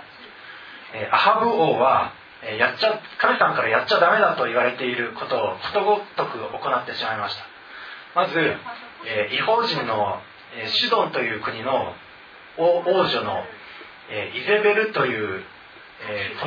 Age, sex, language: 40-59, male, Japanese